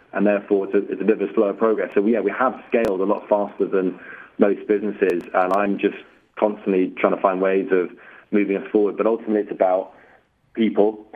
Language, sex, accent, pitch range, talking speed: English, male, British, 100-110 Hz, 205 wpm